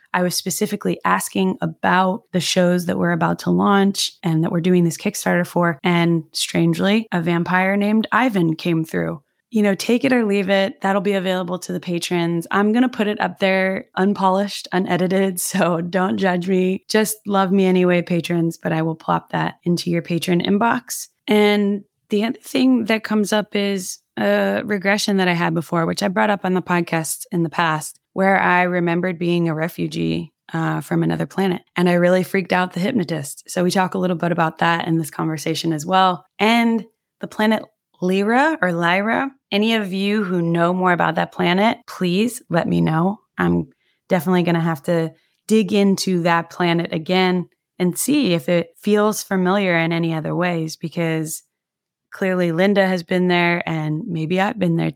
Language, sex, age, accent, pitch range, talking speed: English, female, 20-39, American, 170-200 Hz, 185 wpm